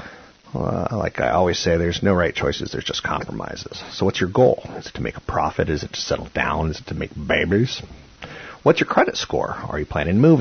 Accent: American